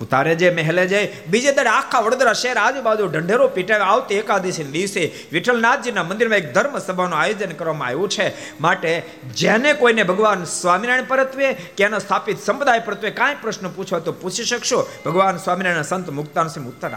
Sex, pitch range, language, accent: male, 150-210 Hz, Gujarati, native